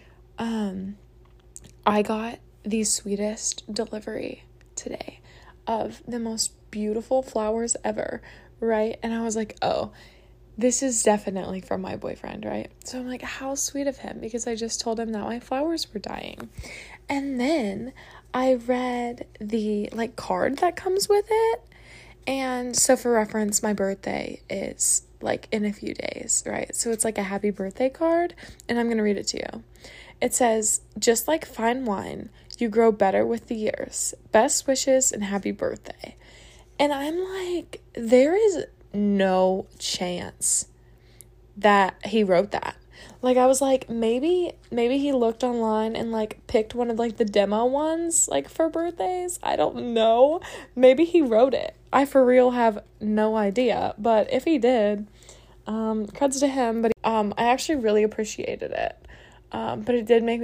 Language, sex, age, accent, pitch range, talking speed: English, female, 20-39, American, 210-260 Hz, 165 wpm